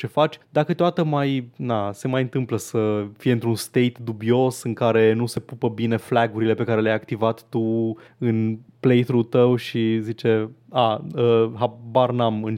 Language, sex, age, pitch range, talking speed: Romanian, male, 20-39, 110-135 Hz, 175 wpm